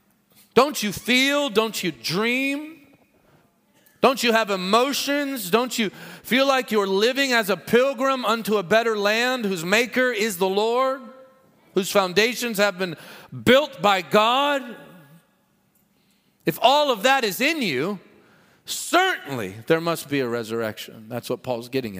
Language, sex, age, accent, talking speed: English, male, 40-59, American, 140 wpm